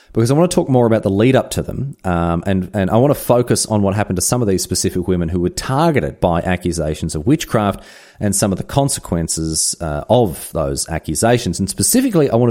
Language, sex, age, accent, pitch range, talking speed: English, male, 30-49, Australian, 95-130 Hz, 230 wpm